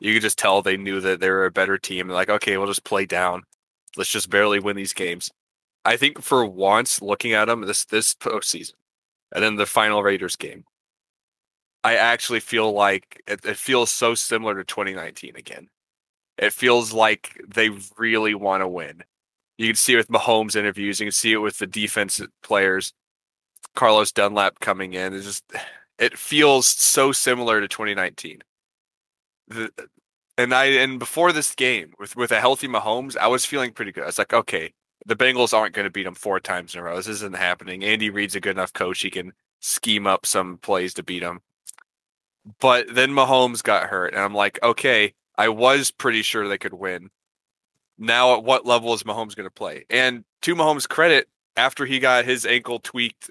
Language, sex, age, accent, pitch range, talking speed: English, male, 20-39, American, 100-120 Hz, 190 wpm